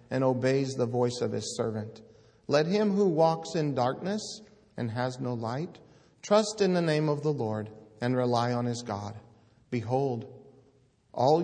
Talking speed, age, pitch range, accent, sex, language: 165 wpm, 50-69, 115-135 Hz, American, male, English